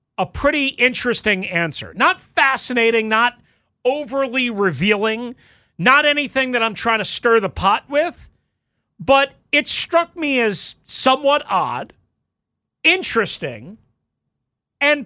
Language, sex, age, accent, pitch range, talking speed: English, male, 40-59, American, 185-275 Hz, 110 wpm